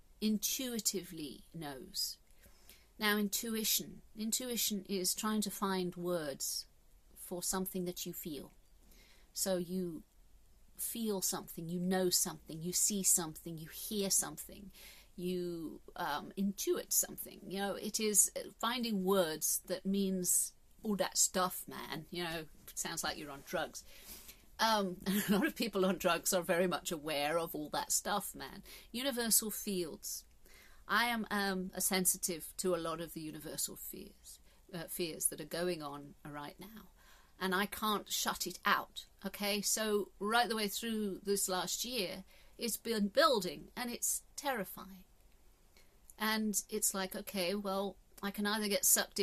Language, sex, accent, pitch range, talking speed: English, female, British, 175-205 Hz, 145 wpm